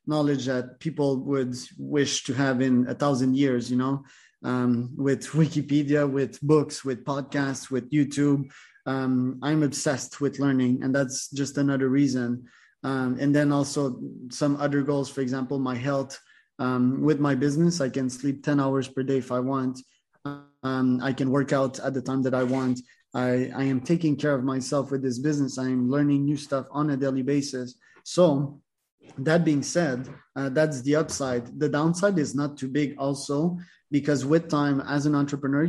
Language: English